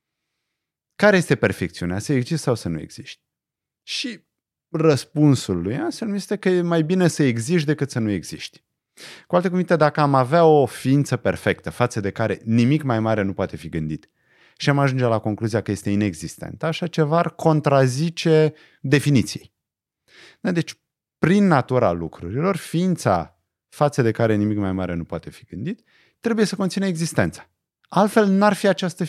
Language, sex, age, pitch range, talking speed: Romanian, male, 30-49, 105-170 Hz, 160 wpm